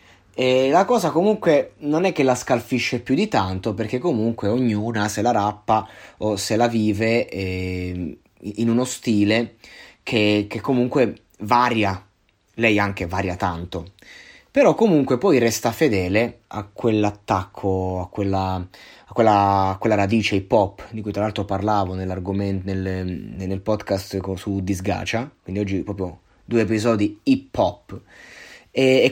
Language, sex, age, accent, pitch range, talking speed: Italian, male, 20-39, native, 95-125 Hz, 130 wpm